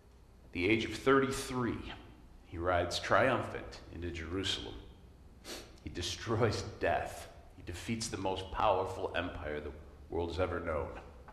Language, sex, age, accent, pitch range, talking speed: English, male, 40-59, American, 85-135 Hz, 120 wpm